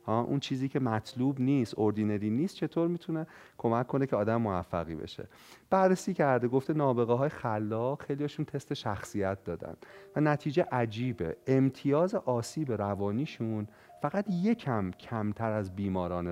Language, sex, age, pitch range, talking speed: Persian, male, 30-49, 105-140 Hz, 130 wpm